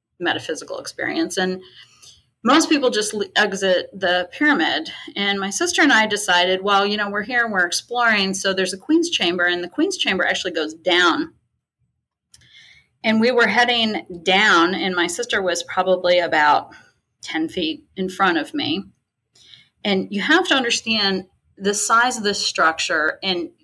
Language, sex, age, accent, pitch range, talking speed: English, female, 30-49, American, 180-245 Hz, 160 wpm